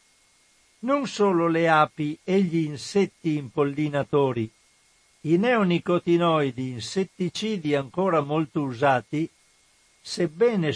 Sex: male